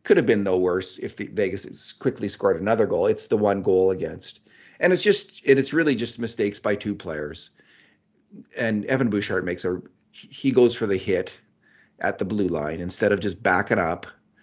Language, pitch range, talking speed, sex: English, 90-115 Hz, 195 wpm, male